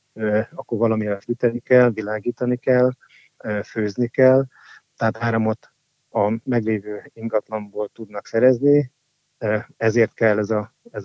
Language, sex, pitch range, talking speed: Hungarian, male, 110-130 Hz, 110 wpm